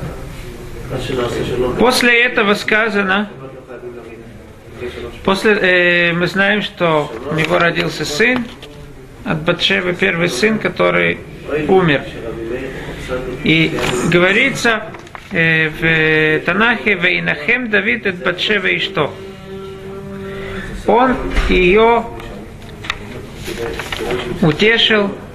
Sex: male